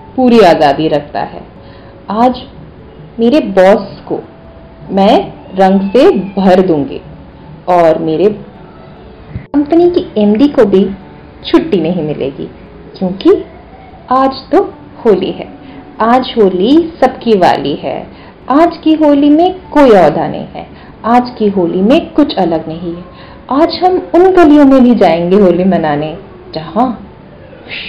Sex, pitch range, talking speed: female, 185-285 Hz, 125 wpm